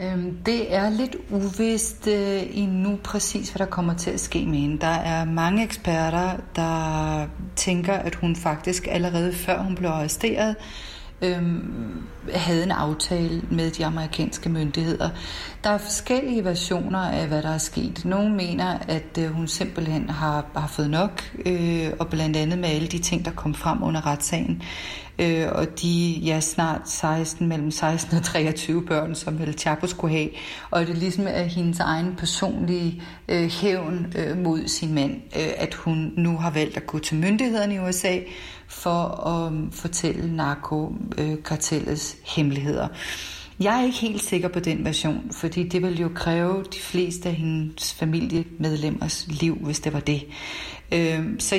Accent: native